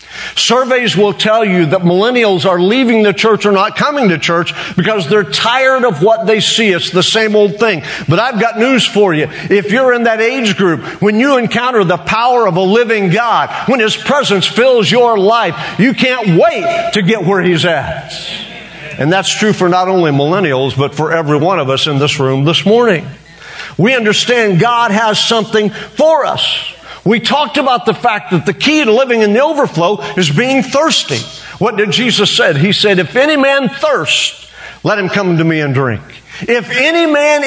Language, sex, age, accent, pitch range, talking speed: English, male, 50-69, American, 175-235 Hz, 195 wpm